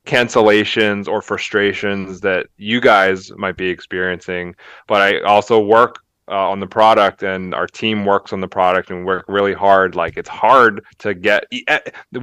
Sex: male